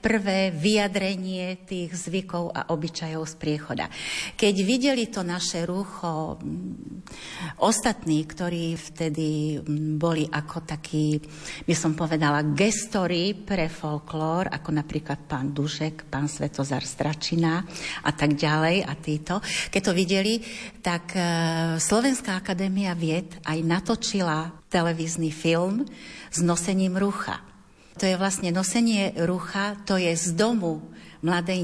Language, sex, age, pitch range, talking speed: Slovak, female, 40-59, 160-200 Hz, 115 wpm